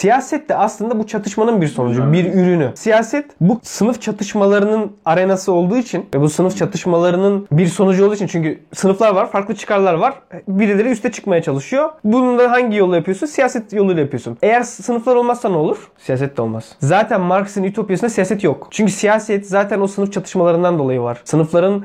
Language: Turkish